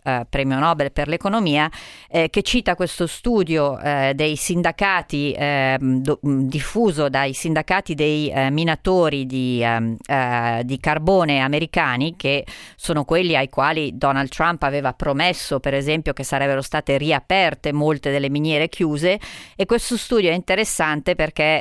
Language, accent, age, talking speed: Italian, native, 40-59, 135 wpm